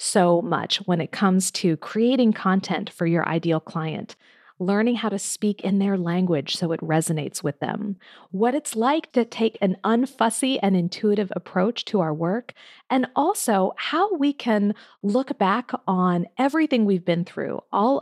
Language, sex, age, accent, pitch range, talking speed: English, female, 40-59, American, 175-235 Hz, 165 wpm